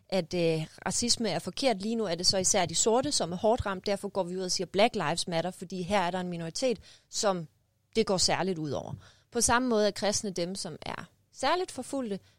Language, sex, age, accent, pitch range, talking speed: Danish, female, 30-49, native, 180-220 Hz, 230 wpm